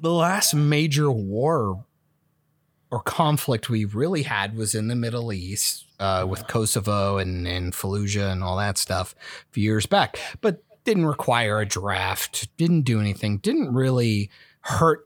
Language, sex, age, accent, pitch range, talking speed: English, male, 30-49, American, 110-155 Hz, 155 wpm